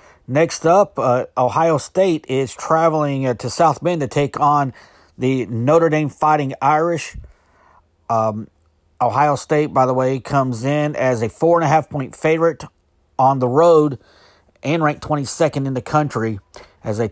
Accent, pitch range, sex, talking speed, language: American, 120-150 Hz, male, 160 wpm, English